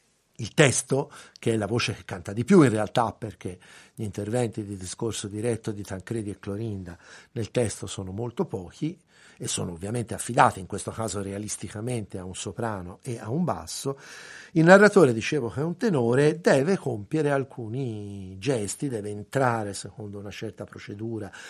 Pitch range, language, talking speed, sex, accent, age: 100-135 Hz, Italian, 165 wpm, male, native, 60-79